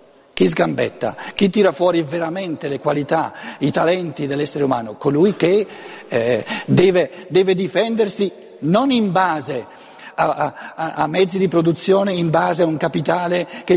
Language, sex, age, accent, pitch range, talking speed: Italian, male, 60-79, native, 160-215 Hz, 145 wpm